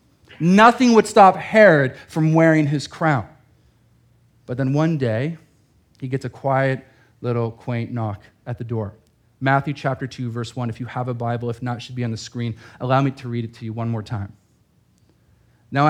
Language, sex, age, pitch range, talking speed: English, male, 40-59, 120-155 Hz, 190 wpm